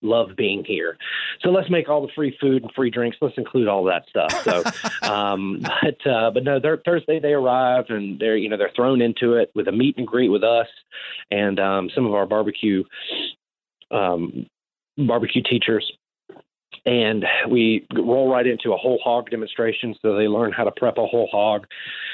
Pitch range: 105-130 Hz